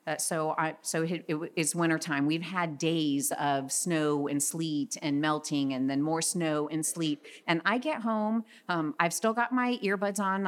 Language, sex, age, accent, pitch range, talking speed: English, female, 40-59, American, 155-205 Hz, 195 wpm